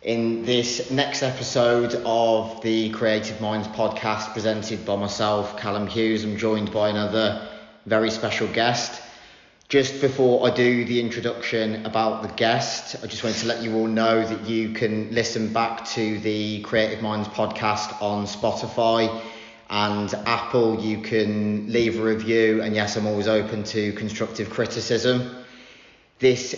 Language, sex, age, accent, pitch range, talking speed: English, male, 30-49, British, 110-120 Hz, 150 wpm